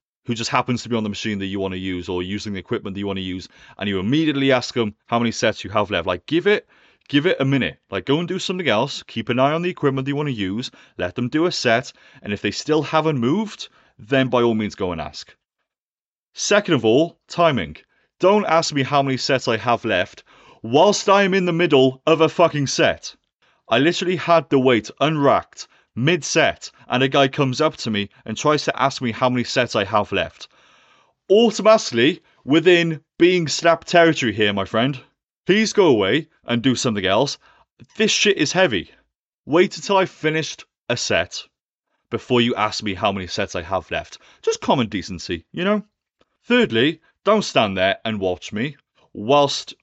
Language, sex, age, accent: English, male, 30-49, British